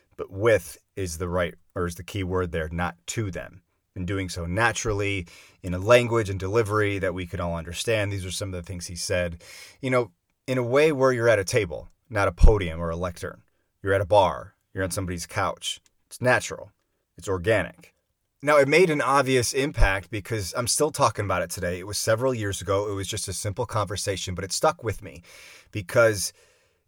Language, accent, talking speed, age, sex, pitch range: English, American, 210 wpm, 30-49, male, 95-115 Hz